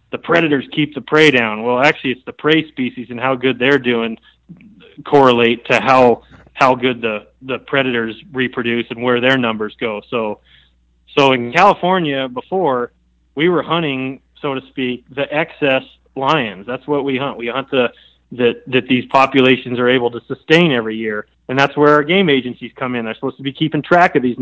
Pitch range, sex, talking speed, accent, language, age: 115-140 Hz, male, 190 wpm, American, English, 30-49